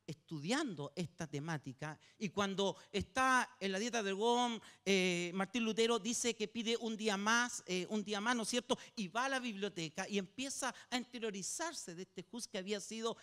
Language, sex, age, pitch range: Spanish, male, 50-69, 175-250 Hz